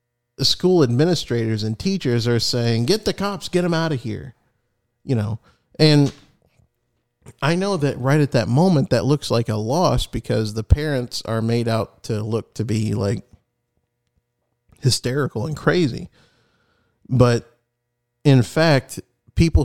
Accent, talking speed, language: American, 145 wpm, English